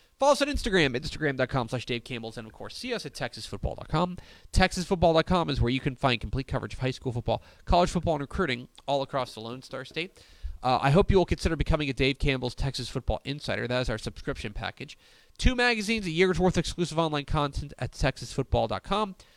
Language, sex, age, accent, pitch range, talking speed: English, male, 30-49, American, 110-150 Hz, 205 wpm